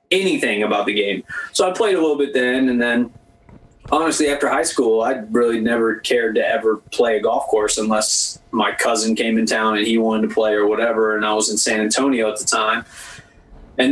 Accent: American